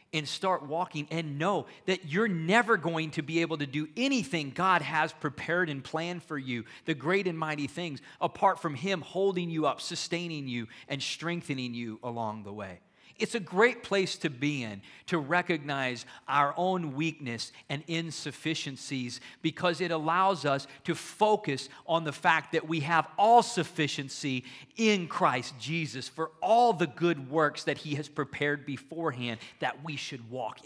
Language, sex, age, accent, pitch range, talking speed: English, male, 40-59, American, 150-210 Hz, 170 wpm